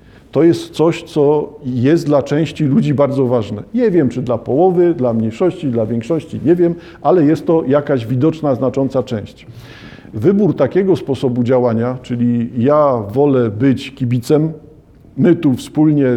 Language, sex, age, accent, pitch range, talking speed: Polish, male, 50-69, native, 125-150 Hz, 150 wpm